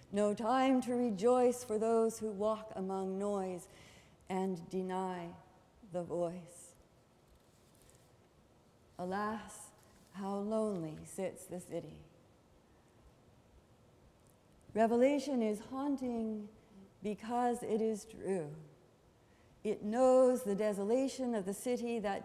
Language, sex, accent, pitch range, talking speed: English, female, American, 185-235 Hz, 95 wpm